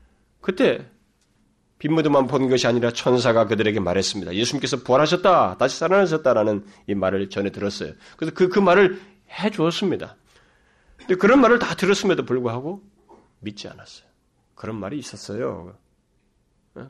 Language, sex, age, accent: Korean, male, 40-59, native